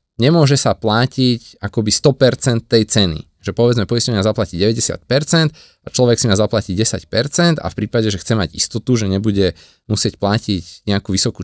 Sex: male